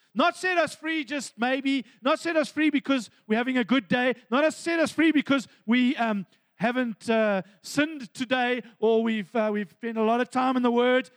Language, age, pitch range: English, 40-59, 210-260 Hz